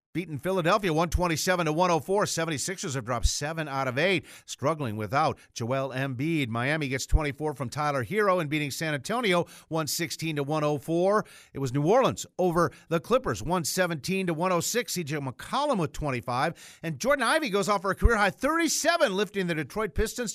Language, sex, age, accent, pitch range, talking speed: English, male, 50-69, American, 145-195 Hz, 170 wpm